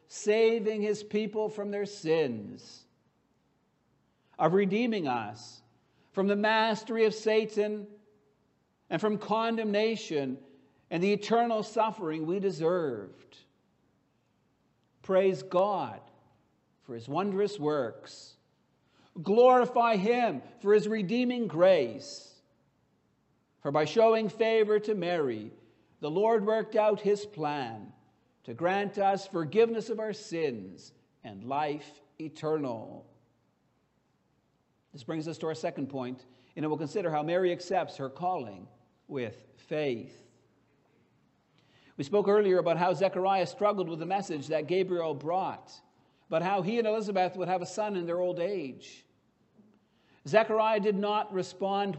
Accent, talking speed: American, 120 wpm